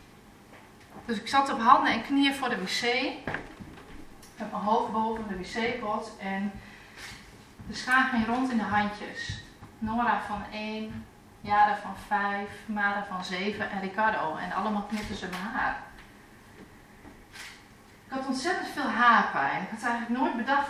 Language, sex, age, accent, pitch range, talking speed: Dutch, female, 30-49, Dutch, 205-255 Hz, 150 wpm